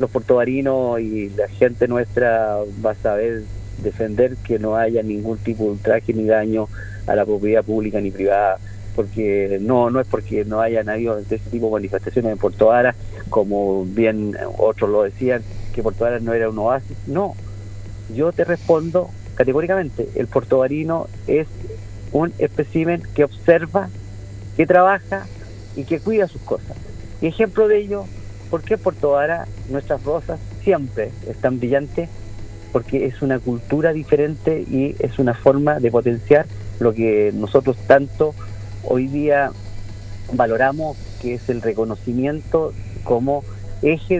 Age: 50-69